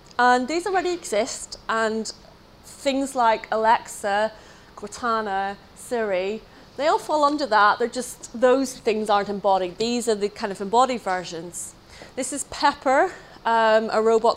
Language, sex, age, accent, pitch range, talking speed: English, female, 30-49, British, 220-275 Hz, 140 wpm